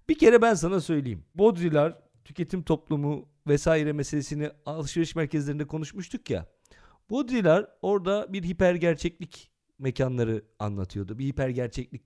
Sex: male